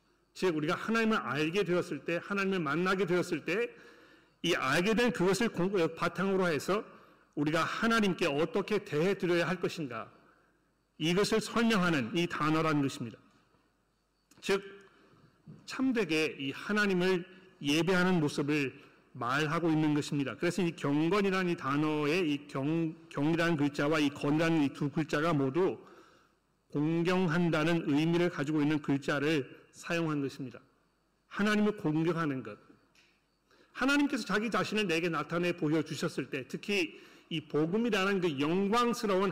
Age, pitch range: 40-59, 150-195 Hz